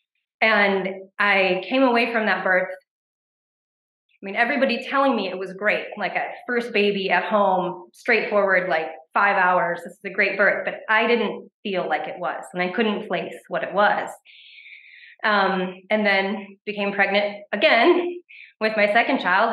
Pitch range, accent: 180-210 Hz, American